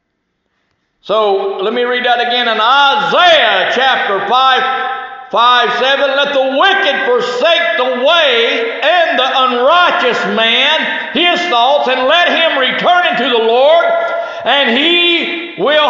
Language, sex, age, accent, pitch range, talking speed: English, male, 60-79, American, 250-350 Hz, 130 wpm